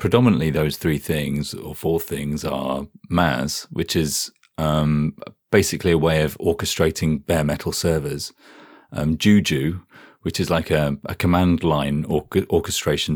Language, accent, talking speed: English, British, 140 wpm